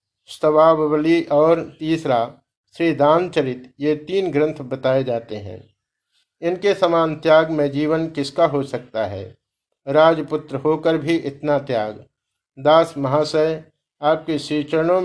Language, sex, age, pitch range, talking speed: Hindi, male, 50-69, 135-165 Hz, 120 wpm